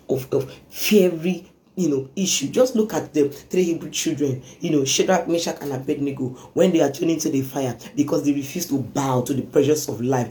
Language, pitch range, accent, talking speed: English, 140-185 Hz, Nigerian, 210 wpm